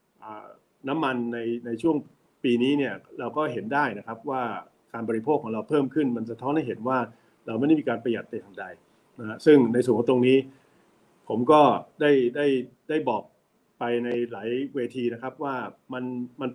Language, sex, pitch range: Thai, male, 115-140 Hz